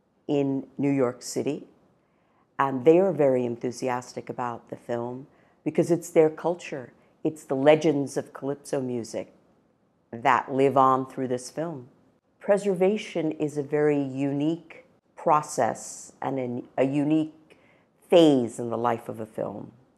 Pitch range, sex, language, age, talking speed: 130-160 Hz, female, English, 50-69, 130 wpm